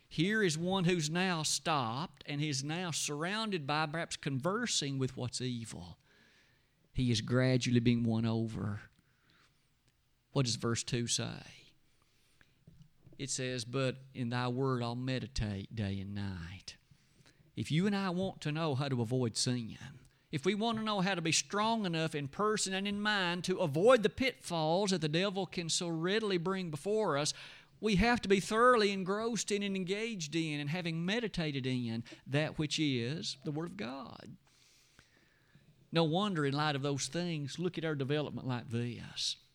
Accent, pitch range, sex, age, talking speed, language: American, 130-190 Hz, male, 50-69, 170 wpm, English